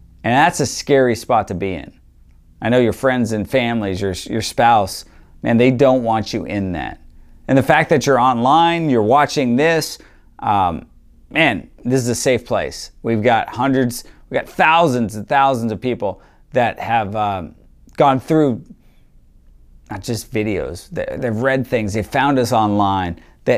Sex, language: male, English